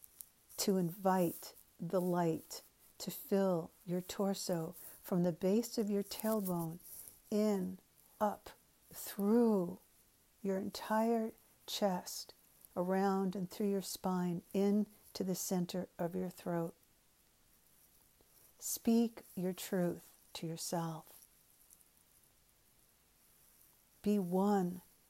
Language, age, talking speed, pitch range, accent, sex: English, 60-79, 95 wpm, 175-195 Hz, American, female